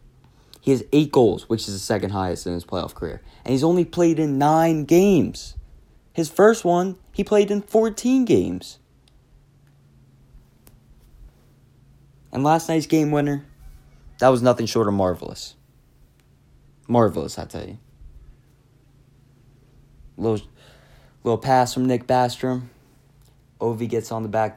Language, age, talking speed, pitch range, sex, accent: English, 20-39, 130 wpm, 100-140 Hz, male, American